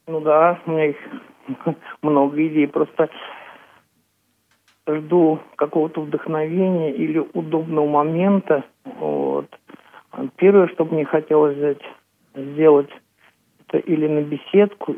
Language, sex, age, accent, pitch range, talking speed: Russian, male, 50-69, native, 145-160 Hz, 100 wpm